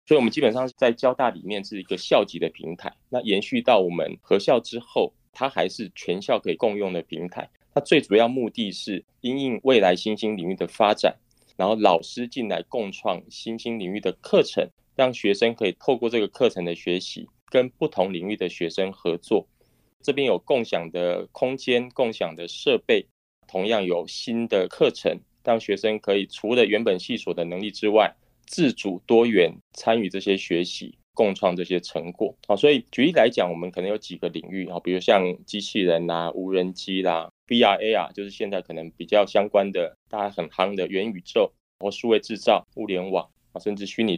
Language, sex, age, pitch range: Chinese, male, 20-39, 90-115 Hz